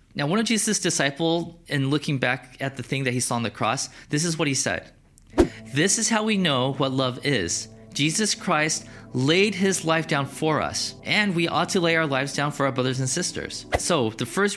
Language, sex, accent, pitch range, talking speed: English, male, American, 130-165 Hz, 225 wpm